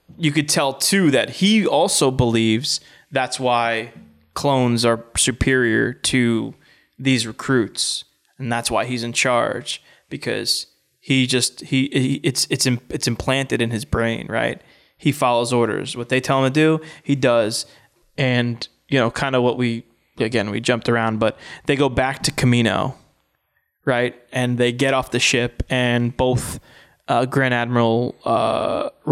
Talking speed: 155 wpm